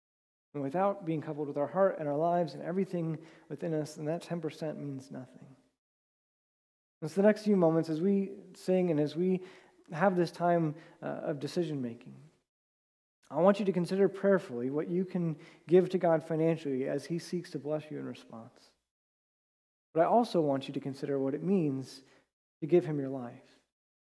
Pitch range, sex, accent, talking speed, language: 135-170 Hz, male, American, 180 wpm, English